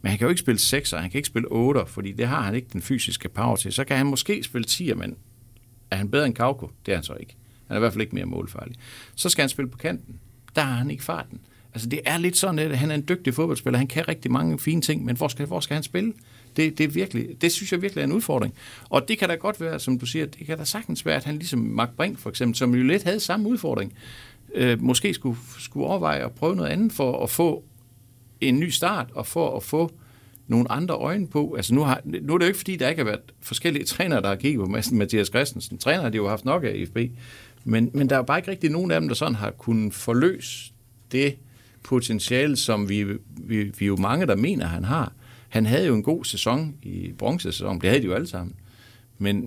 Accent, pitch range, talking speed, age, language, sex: native, 110-145 Hz, 255 wpm, 60-79, Danish, male